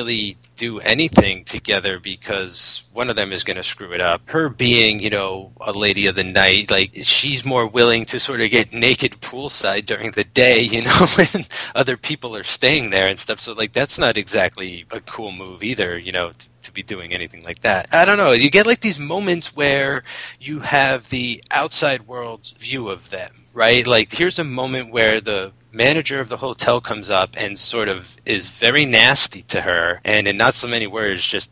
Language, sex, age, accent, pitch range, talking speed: English, male, 30-49, American, 100-125 Hz, 205 wpm